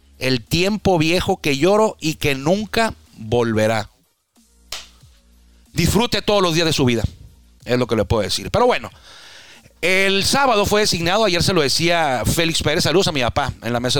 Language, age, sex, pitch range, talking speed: Spanish, 40-59, male, 120-160 Hz, 180 wpm